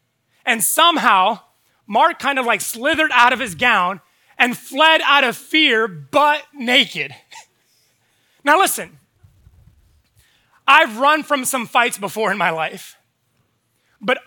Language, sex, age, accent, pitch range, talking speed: English, male, 20-39, American, 205-285 Hz, 125 wpm